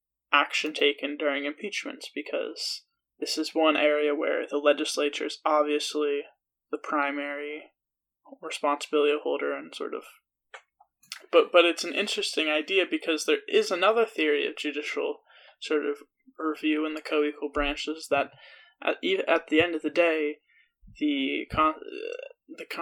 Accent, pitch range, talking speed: American, 150-230 Hz, 135 wpm